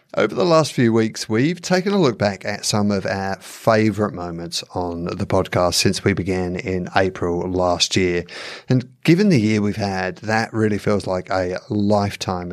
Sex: male